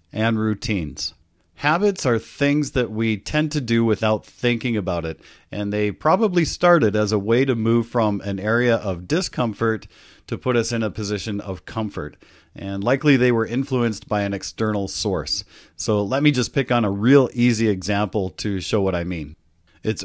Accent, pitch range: American, 100-130 Hz